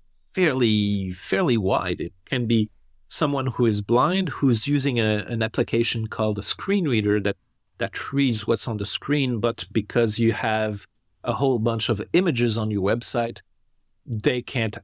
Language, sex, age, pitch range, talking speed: English, male, 40-59, 105-125 Hz, 165 wpm